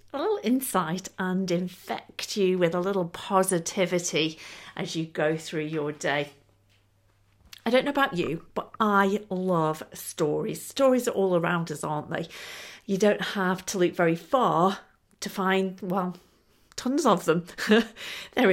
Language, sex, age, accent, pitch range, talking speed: English, female, 40-59, British, 175-225 Hz, 150 wpm